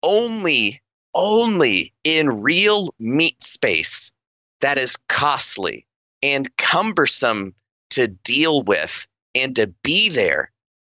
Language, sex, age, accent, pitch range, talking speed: English, male, 30-49, American, 110-155 Hz, 100 wpm